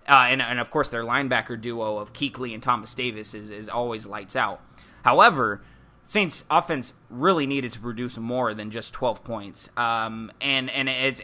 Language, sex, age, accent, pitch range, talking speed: English, male, 20-39, American, 115-155 Hz, 180 wpm